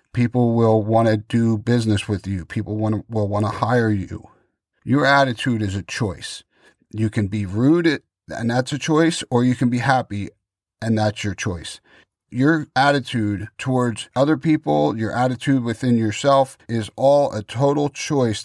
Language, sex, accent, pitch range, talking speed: English, male, American, 110-125 Hz, 165 wpm